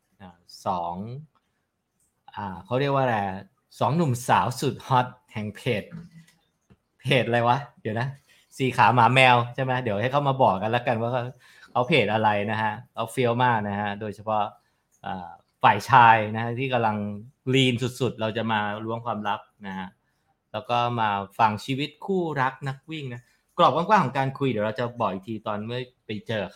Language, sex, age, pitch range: English, male, 20-39, 105-130 Hz